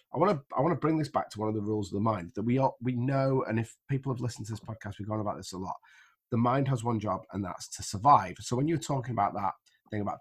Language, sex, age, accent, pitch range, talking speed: English, male, 30-49, British, 100-130 Hz, 310 wpm